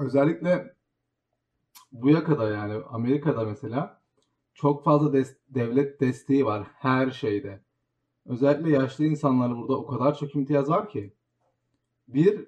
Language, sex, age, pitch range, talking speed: Turkish, male, 40-59, 130-155 Hz, 115 wpm